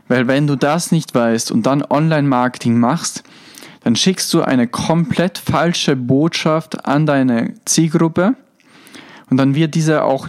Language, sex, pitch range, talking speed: German, male, 125-160 Hz, 145 wpm